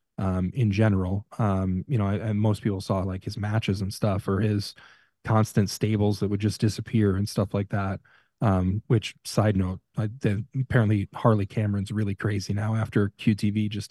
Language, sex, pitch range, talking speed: English, male, 100-115 Hz, 180 wpm